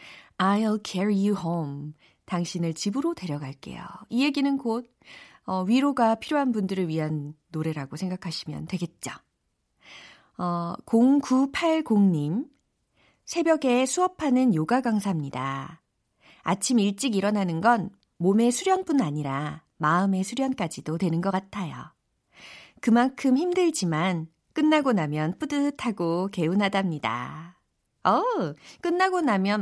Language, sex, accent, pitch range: Korean, female, native, 165-245 Hz